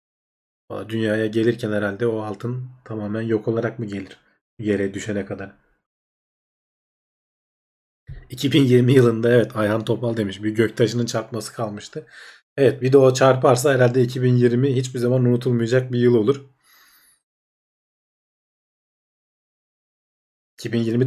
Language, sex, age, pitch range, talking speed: Turkish, male, 40-59, 110-130 Hz, 105 wpm